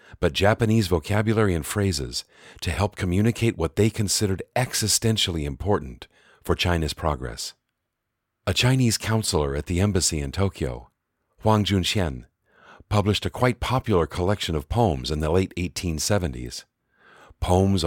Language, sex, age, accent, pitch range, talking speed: English, male, 50-69, American, 80-105 Hz, 130 wpm